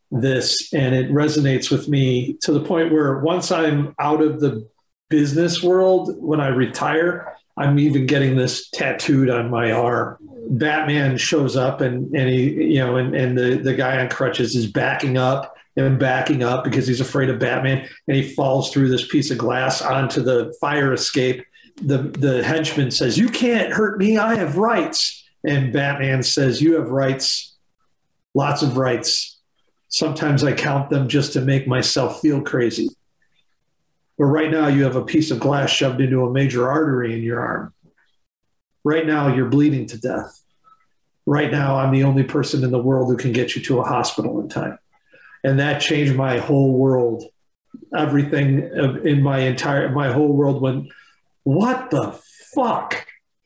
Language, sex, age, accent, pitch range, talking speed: English, male, 40-59, American, 130-150 Hz, 175 wpm